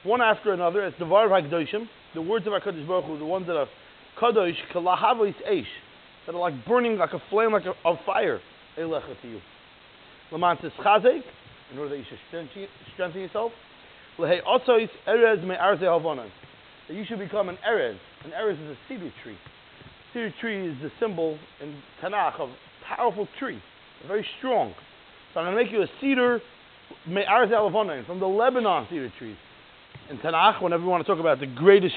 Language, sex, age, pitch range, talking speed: English, male, 30-49, 170-220 Hz, 165 wpm